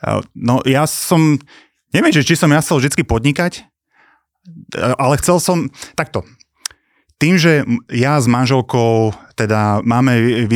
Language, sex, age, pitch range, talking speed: Slovak, male, 30-49, 100-120 Hz, 120 wpm